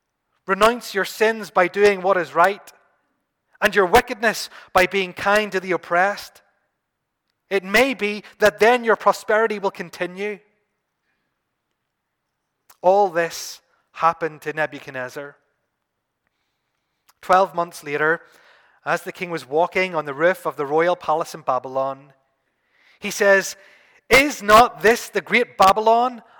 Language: English